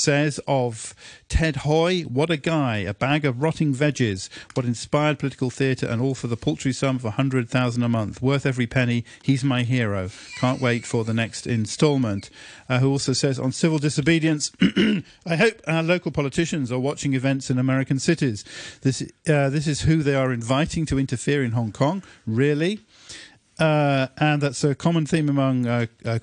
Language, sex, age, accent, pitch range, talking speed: English, male, 50-69, British, 125-150 Hz, 180 wpm